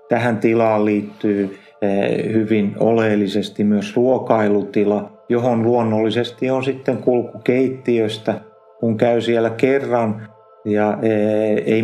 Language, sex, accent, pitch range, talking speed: Finnish, male, native, 105-115 Hz, 95 wpm